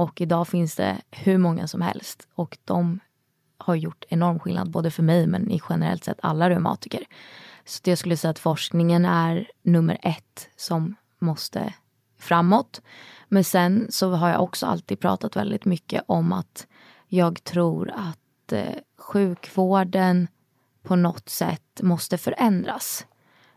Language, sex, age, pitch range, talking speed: English, female, 20-39, 170-190 Hz, 145 wpm